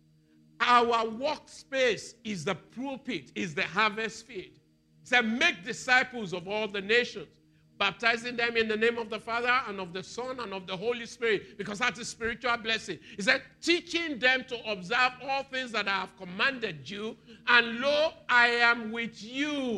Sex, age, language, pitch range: male, 50-69, English, 170-240 Hz